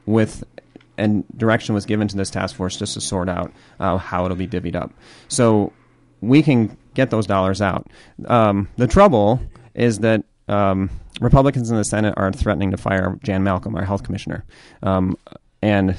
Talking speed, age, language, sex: 175 wpm, 30-49, English, male